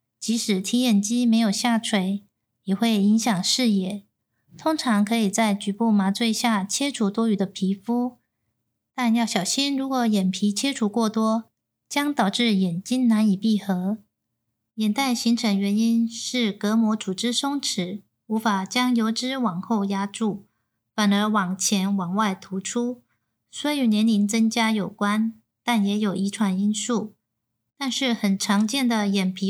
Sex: female